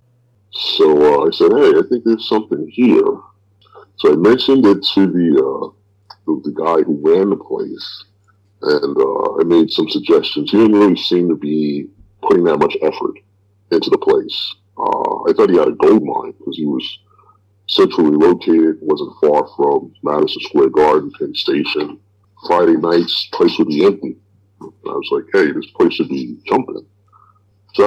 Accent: American